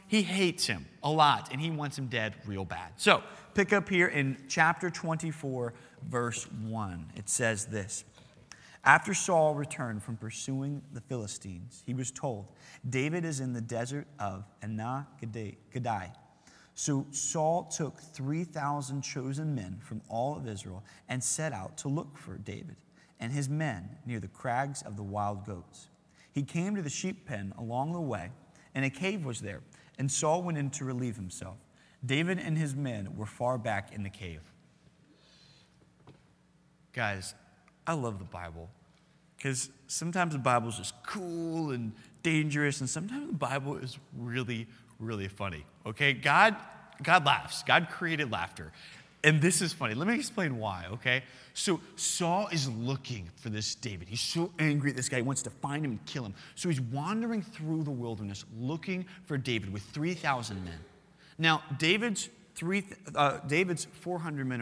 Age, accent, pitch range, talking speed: 30-49, American, 110-160 Hz, 165 wpm